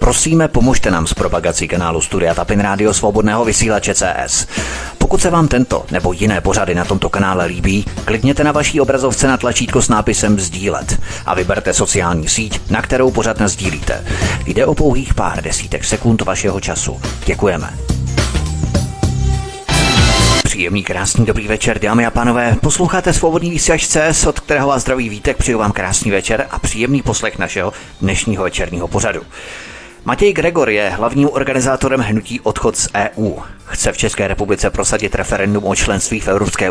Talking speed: 155 wpm